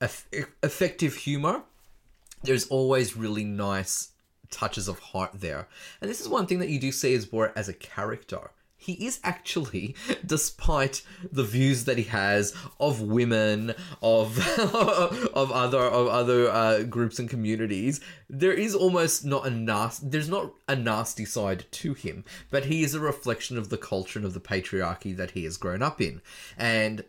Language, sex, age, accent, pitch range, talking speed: English, male, 20-39, Australian, 100-135 Hz, 165 wpm